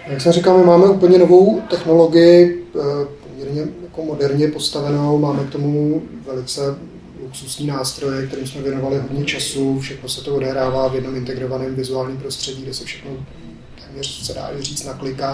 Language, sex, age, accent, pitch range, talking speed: Czech, male, 30-49, native, 125-140 Hz, 160 wpm